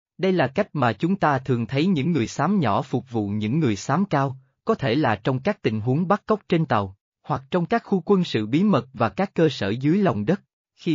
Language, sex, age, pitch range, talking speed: Vietnamese, male, 20-39, 115-170 Hz, 245 wpm